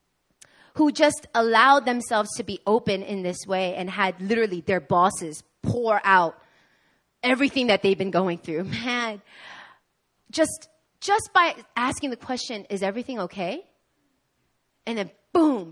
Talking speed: 135 wpm